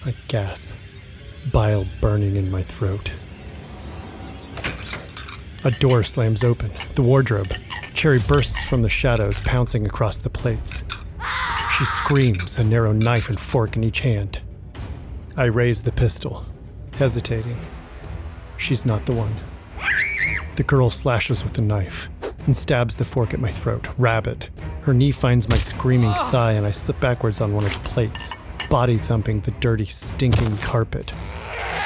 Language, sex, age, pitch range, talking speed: English, male, 40-59, 95-120 Hz, 145 wpm